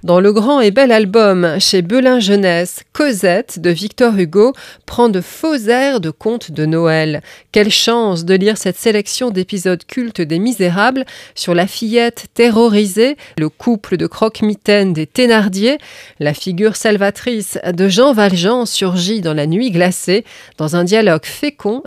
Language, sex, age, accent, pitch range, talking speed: French, female, 30-49, French, 180-240 Hz, 155 wpm